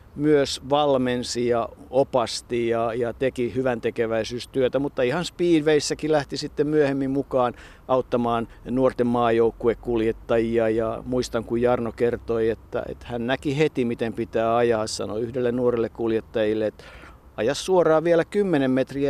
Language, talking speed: Finnish, 130 wpm